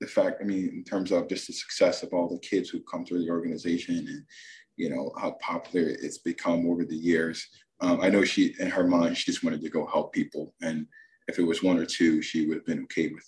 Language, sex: English, male